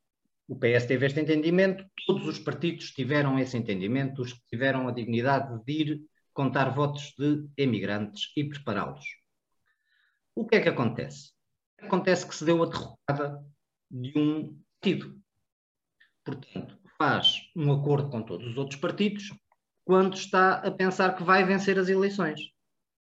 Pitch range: 130-175 Hz